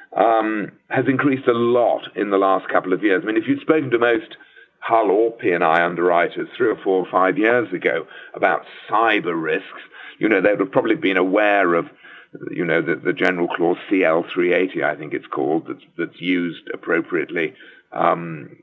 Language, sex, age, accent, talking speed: English, male, 50-69, British, 185 wpm